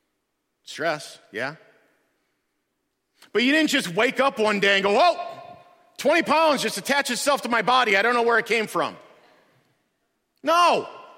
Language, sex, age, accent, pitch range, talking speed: English, male, 40-59, American, 210-300 Hz, 155 wpm